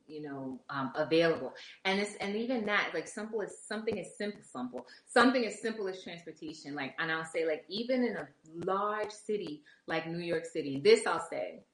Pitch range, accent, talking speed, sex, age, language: 160-200 Hz, American, 195 wpm, female, 20-39, English